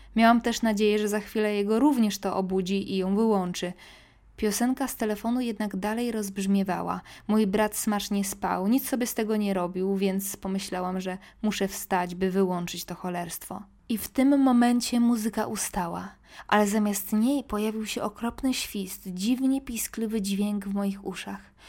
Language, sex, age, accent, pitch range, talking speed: Polish, female, 20-39, native, 195-225 Hz, 160 wpm